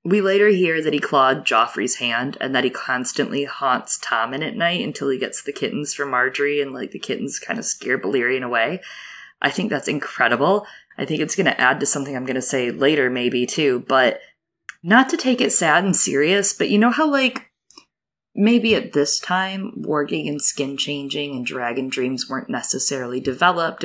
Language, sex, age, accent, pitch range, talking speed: English, female, 20-39, American, 125-180 Hz, 200 wpm